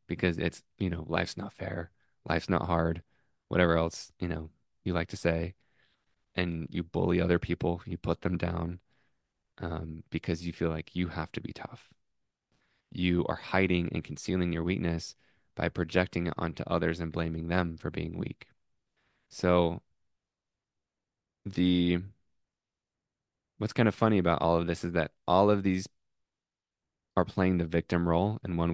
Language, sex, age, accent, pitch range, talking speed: English, male, 20-39, American, 80-90 Hz, 160 wpm